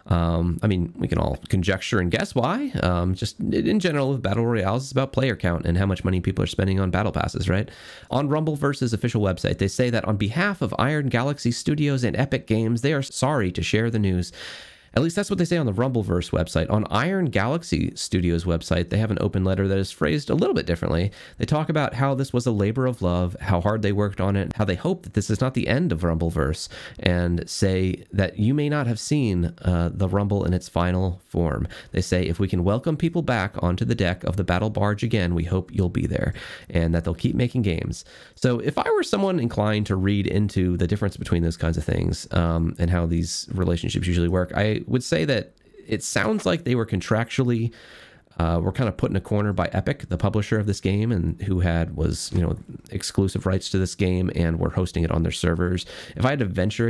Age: 30-49